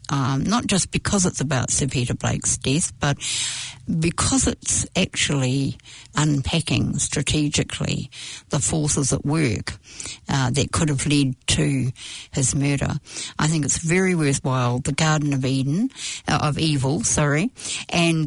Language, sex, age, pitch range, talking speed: English, female, 60-79, 140-160 Hz, 140 wpm